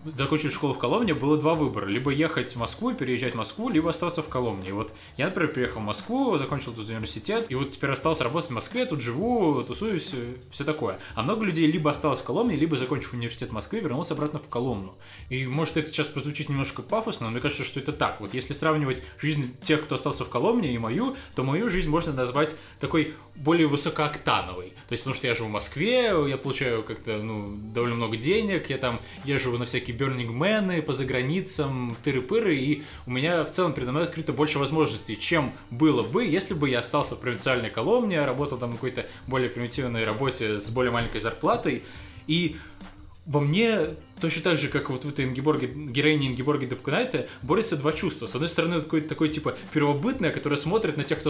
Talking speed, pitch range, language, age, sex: 200 wpm, 125-155 Hz, Russian, 20-39, male